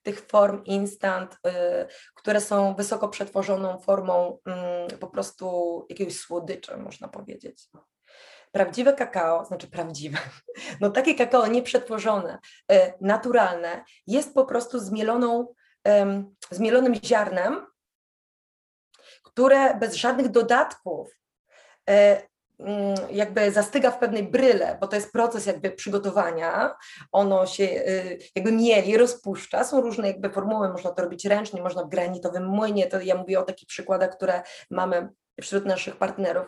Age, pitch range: 20-39, 185-235 Hz